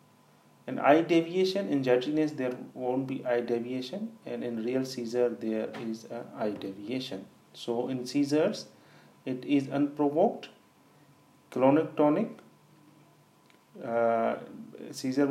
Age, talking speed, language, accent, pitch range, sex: 30-49, 115 wpm, English, Indian, 115-140 Hz, male